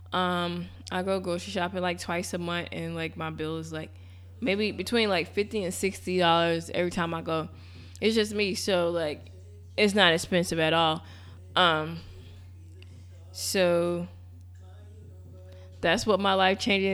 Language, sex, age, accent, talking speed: English, female, 20-39, American, 145 wpm